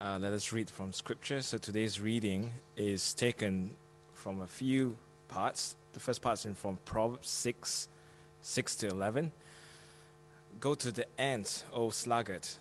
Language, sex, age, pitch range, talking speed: English, male, 20-39, 95-125 Hz, 150 wpm